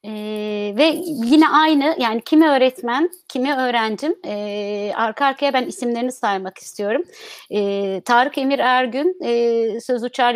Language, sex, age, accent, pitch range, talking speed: Turkish, female, 30-49, native, 220-280 Hz, 135 wpm